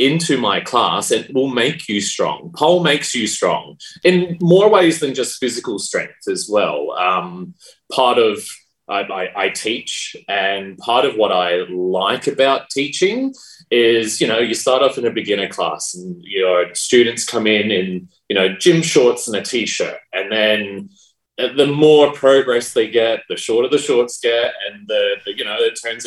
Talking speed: 180 wpm